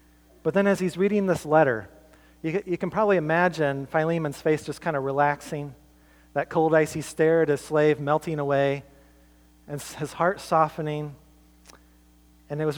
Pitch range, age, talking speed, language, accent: 100-165 Hz, 40-59, 160 wpm, English, American